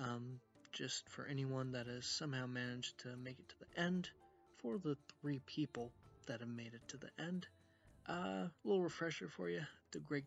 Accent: American